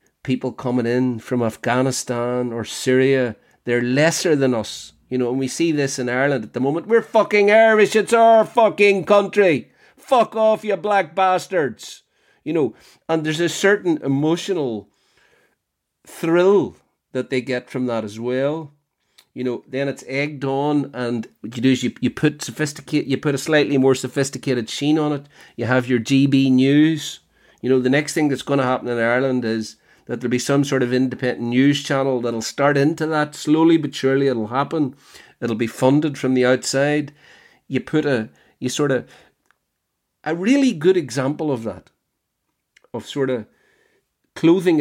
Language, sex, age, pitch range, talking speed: English, male, 40-59, 125-155 Hz, 175 wpm